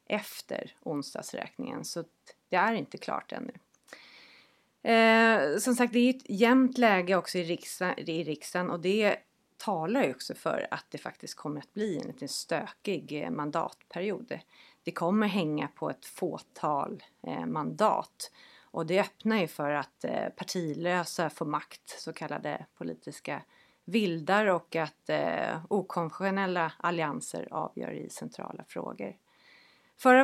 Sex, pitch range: female, 160-200 Hz